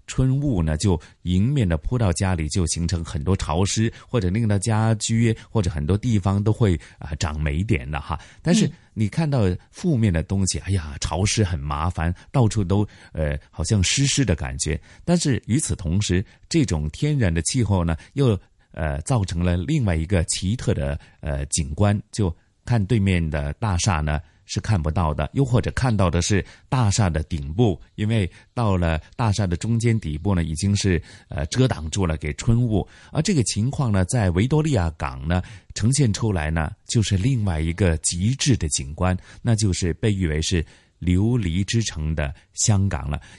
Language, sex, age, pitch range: Chinese, male, 30-49, 85-115 Hz